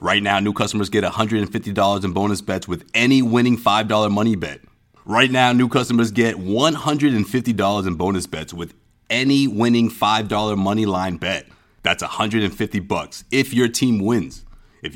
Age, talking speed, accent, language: 30-49, 155 wpm, American, English